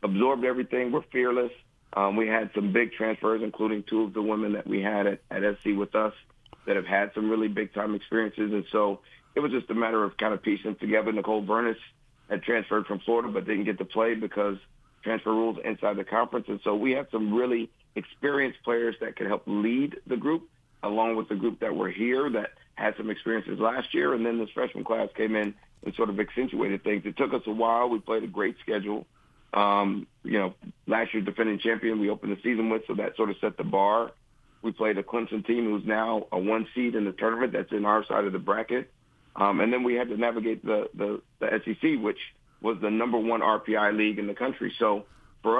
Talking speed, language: 225 wpm, English